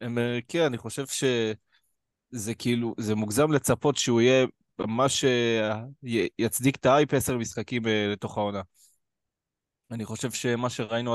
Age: 20-39